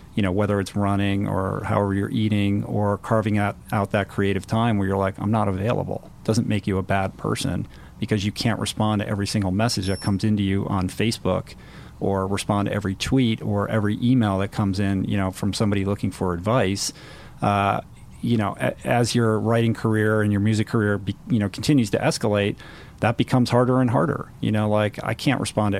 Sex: male